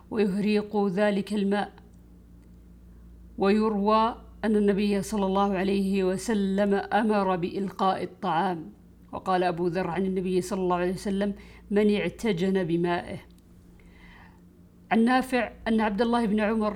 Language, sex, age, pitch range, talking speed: Arabic, female, 50-69, 180-205 Hz, 110 wpm